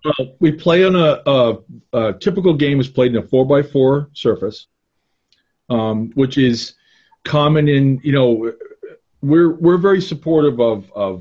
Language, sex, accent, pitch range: English, male, American, 110-140 Hz